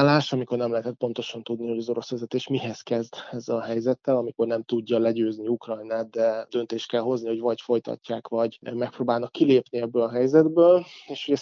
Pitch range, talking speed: 115-130 Hz, 180 wpm